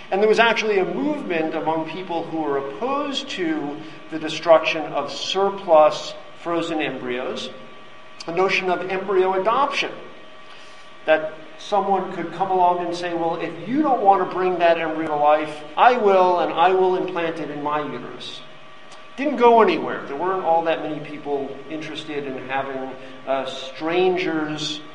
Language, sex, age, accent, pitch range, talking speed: English, male, 50-69, American, 155-195 Hz, 155 wpm